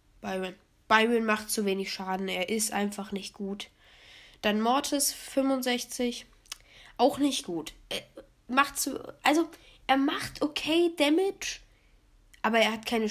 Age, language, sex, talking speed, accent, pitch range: 20-39, German, female, 135 wpm, German, 210-290 Hz